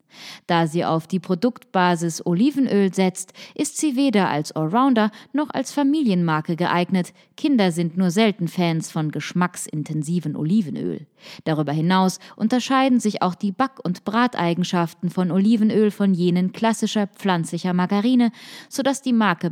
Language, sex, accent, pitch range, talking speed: German, female, German, 165-230 Hz, 135 wpm